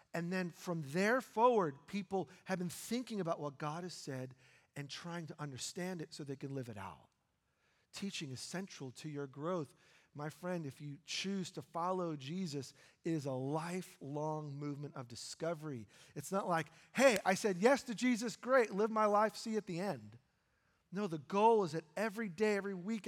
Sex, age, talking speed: male, 40-59, 185 wpm